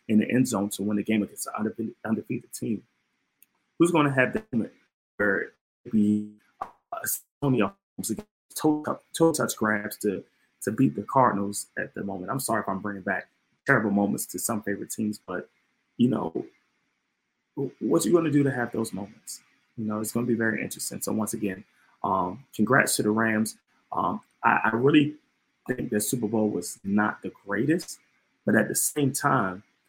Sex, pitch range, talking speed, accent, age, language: male, 105-125 Hz, 180 wpm, American, 20-39, English